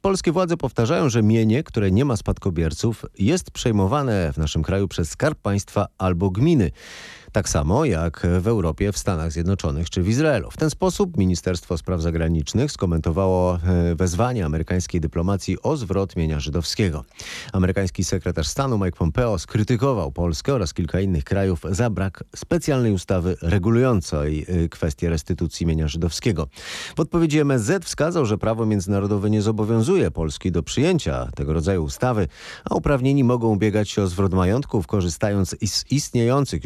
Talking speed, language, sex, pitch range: 145 wpm, Polish, male, 85-120 Hz